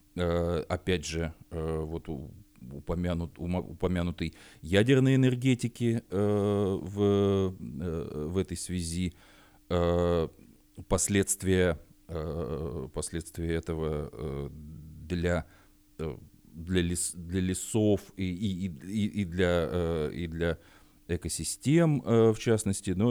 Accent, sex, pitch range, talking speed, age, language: native, male, 80-95 Hz, 75 wpm, 40-59, Russian